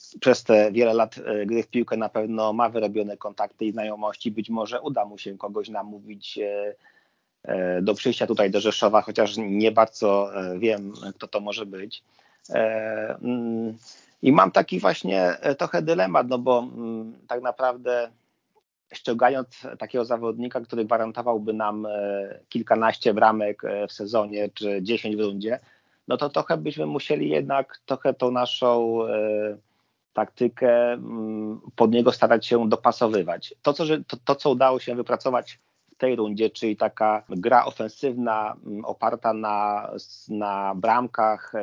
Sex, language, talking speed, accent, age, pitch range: male, Polish, 135 wpm, native, 30-49, 105-120 Hz